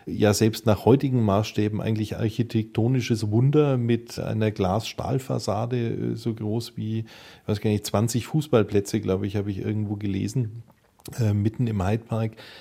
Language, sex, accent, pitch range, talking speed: German, male, German, 105-120 Hz, 145 wpm